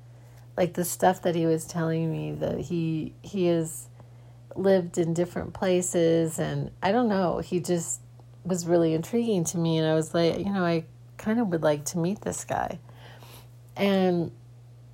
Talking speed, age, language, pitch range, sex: 175 wpm, 40-59, English, 120-180 Hz, female